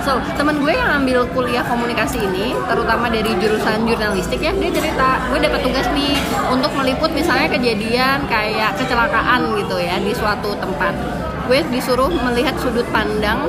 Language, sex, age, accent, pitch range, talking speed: Indonesian, female, 20-39, native, 225-285 Hz, 155 wpm